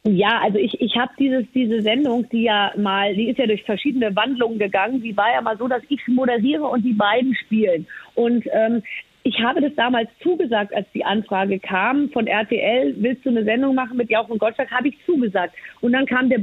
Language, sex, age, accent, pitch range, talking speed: German, female, 40-59, German, 225-275 Hz, 215 wpm